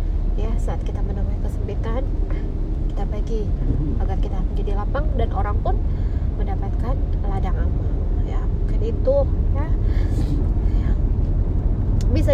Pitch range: 75-95 Hz